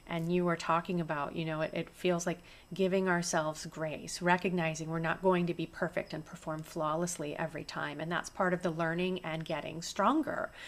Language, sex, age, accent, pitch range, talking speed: English, female, 30-49, American, 165-200 Hz, 195 wpm